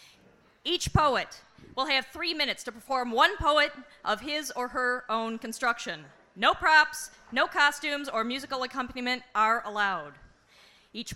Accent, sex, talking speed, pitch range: American, female, 140 wpm, 215-270 Hz